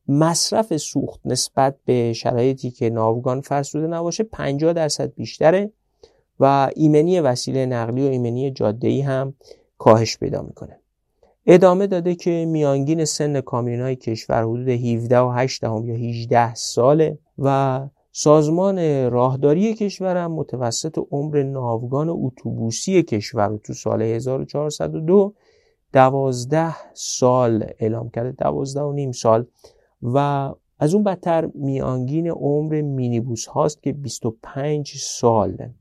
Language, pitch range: Persian, 120-155 Hz